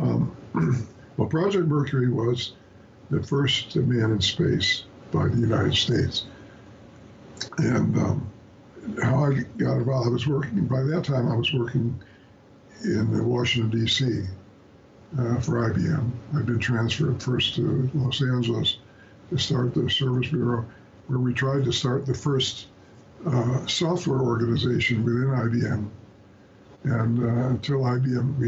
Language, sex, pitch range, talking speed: English, male, 115-130 Hz, 135 wpm